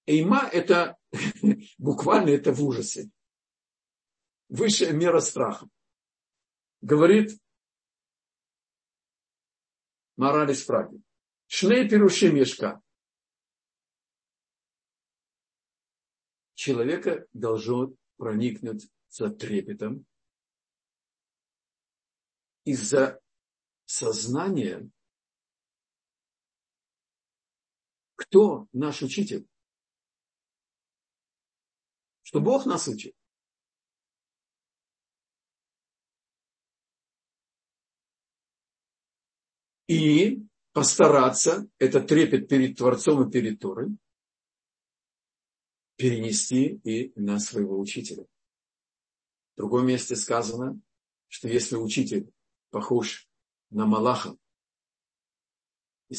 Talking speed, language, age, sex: 60 wpm, Russian, 60-79, male